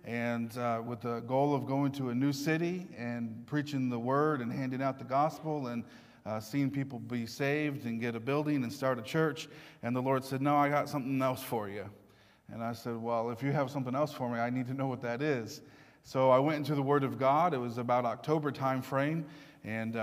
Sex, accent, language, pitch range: male, American, English, 125-150 Hz